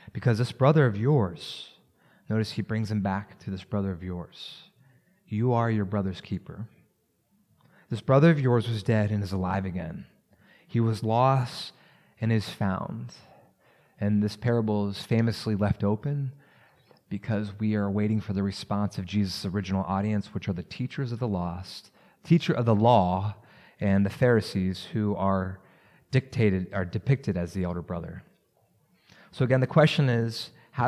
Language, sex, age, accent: English, male, 30-49, American